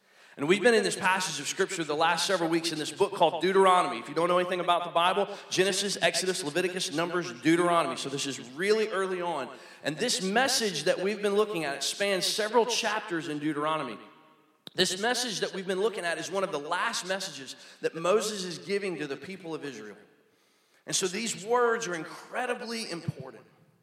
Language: English